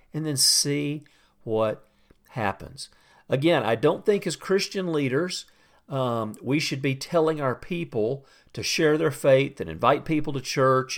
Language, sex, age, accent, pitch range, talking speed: English, male, 50-69, American, 120-155 Hz, 155 wpm